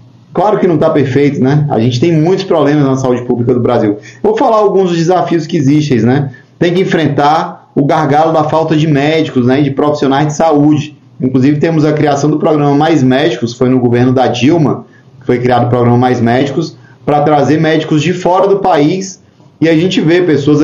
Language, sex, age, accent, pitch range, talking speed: Portuguese, male, 30-49, Brazilian, 130-160 Hz, 205 wpm